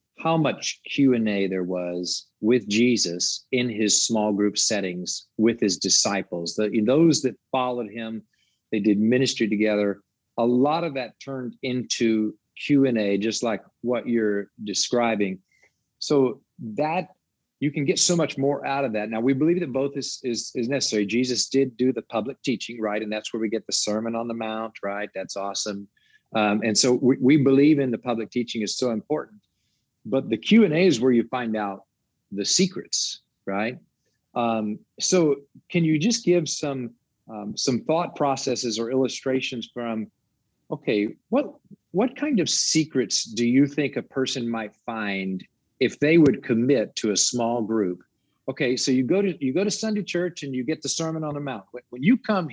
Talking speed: 175 wpm